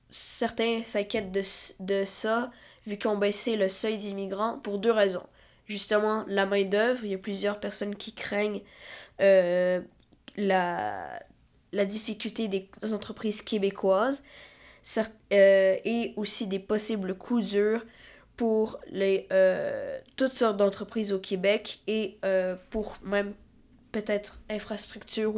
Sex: female